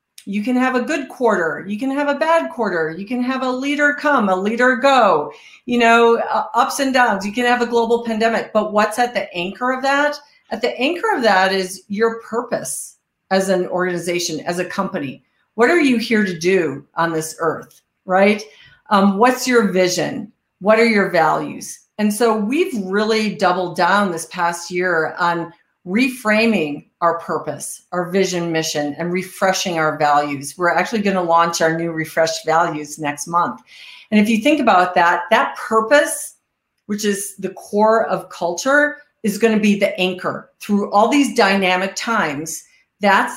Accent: American